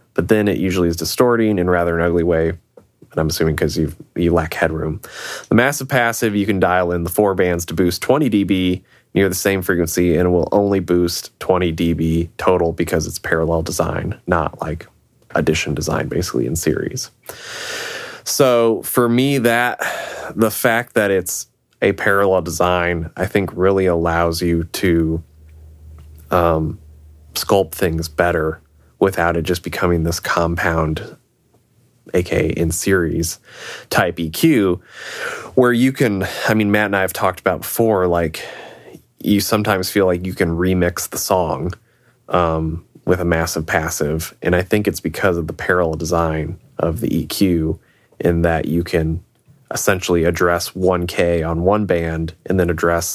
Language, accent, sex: English, American, male